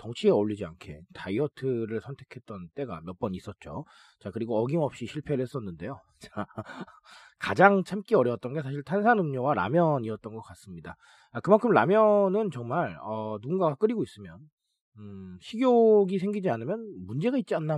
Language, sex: Korean, male